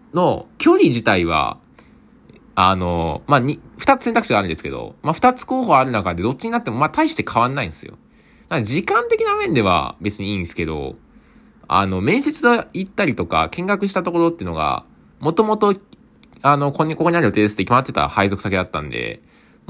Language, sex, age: Japanese, male, 20-39